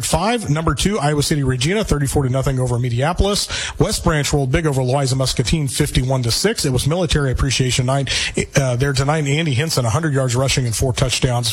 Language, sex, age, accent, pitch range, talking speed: English, male, 40-59, American, 130-155 Hz, 195 wpm